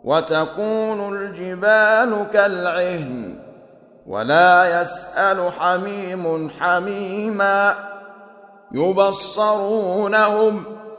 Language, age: Arabic, 50-69